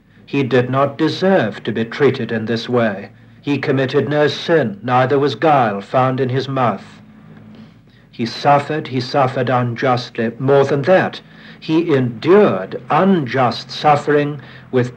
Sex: male